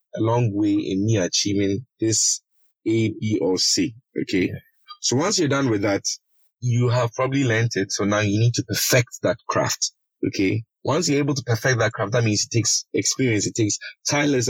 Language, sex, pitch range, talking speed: English, male, 110-130 Hz, 195 wpm